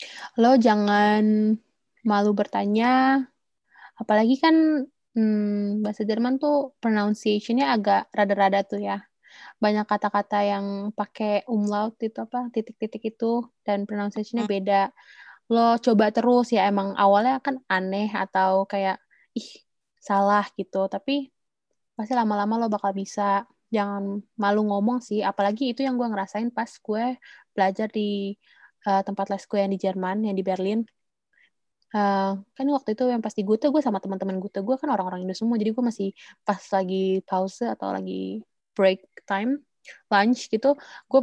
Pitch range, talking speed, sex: 195-235 Hz, 145 wpm, female